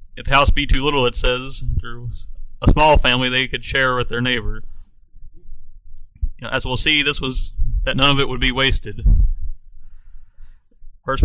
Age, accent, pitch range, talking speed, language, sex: 30-49, American, 90-135 Hz, 175 wpm, English, male